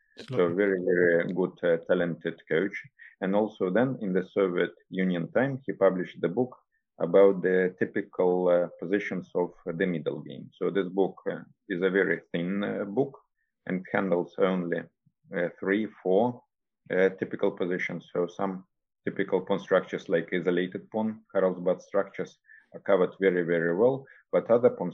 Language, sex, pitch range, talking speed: English, male, 90-100 Hz, 155 wpm